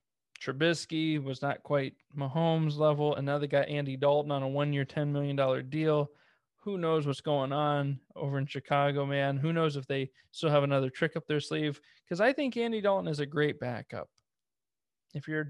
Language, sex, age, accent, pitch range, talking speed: English, male, 20-39, American, 140-160 Hz, 195 wpm